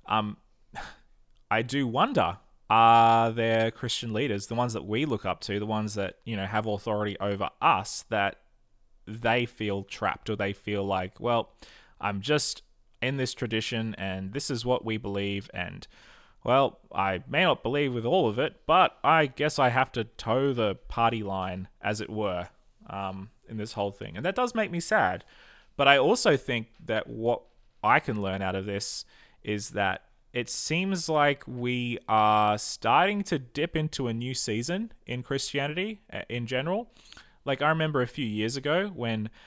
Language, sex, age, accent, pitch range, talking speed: English, male, 20-39, Australian, 100-125 Hz, 175 wpm